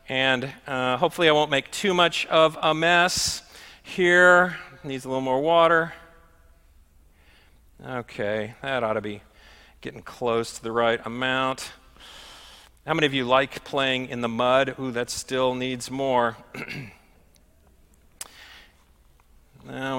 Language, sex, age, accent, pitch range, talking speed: English, male, 40-59, American, 120-175 Hz, 130 wpm